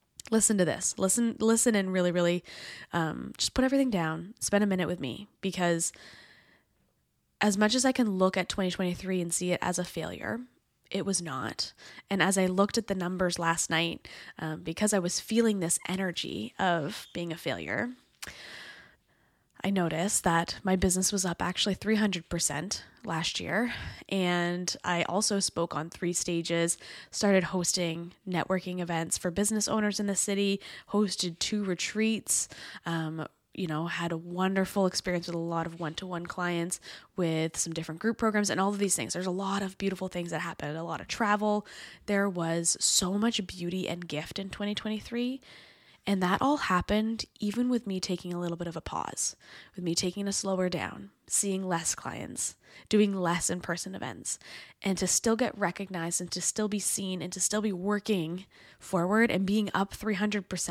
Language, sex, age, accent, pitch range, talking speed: English, female, 20-39, American, 170-205 Hz, 175 wpm